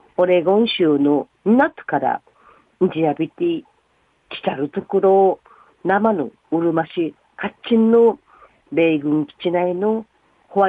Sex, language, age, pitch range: female, Japanese, 40-59, 160-220 Hz